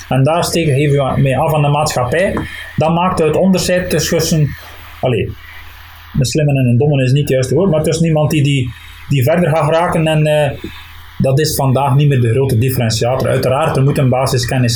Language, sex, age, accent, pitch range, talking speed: Dutch, male, 30-49, Dutch, 120-160 Hz, 215 wpm